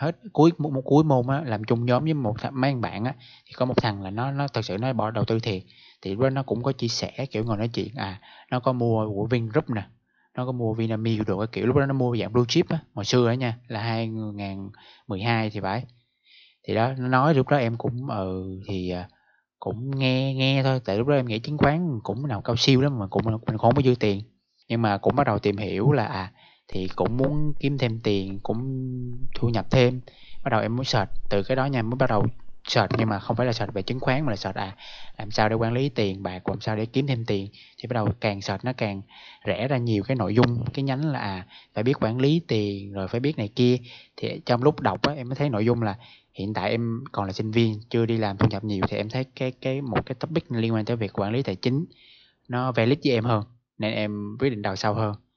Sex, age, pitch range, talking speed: male, 20-39, 105-130 Hz, 265 wpm